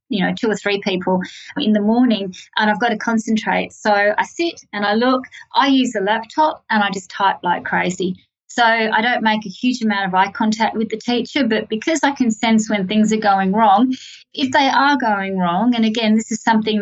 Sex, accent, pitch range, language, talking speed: female, Australian, 195-225 Hz, English, 225 wpm